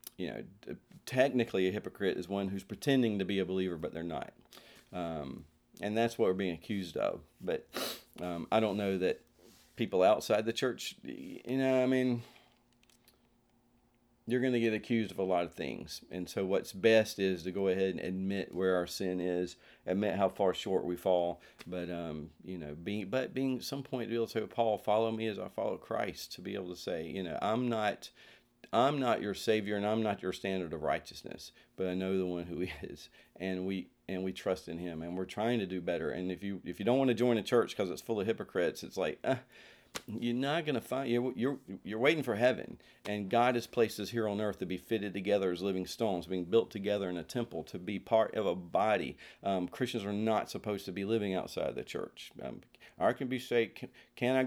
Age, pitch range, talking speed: 40-59, 95-120 Hz, 230 wpm